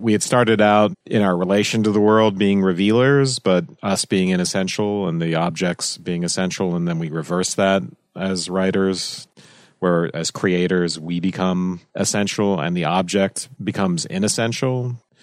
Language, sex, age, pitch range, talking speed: English, male, 40-59, 90-105 Hz, 155 wpm